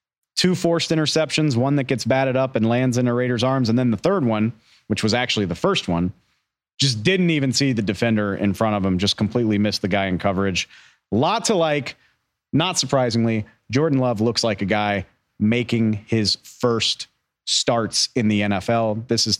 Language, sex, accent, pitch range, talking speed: English, male, American, 105-130 Hz, 190 wpm